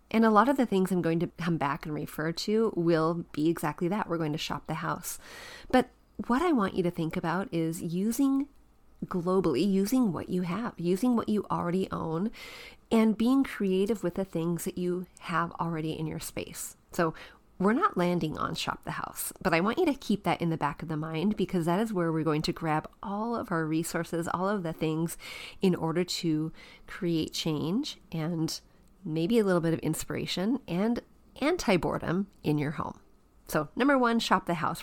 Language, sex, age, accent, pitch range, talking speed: English, female, 30-49, American, 160-210 Hz, 200 wpm